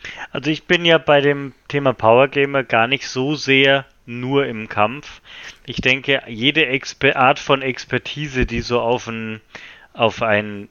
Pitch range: 110-135 Hz